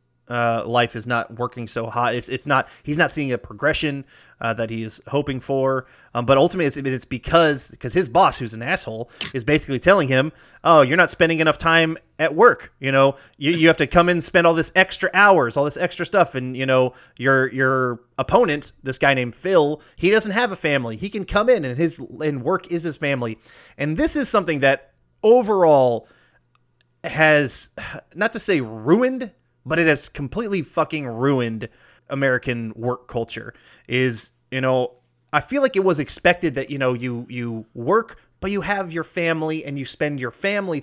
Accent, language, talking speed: American, English, 195 wpm